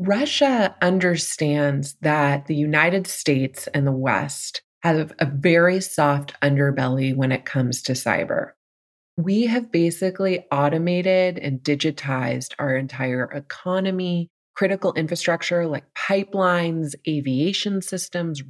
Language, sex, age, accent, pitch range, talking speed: English, female, 20-39, American, 140-180 Hz, 110 wpm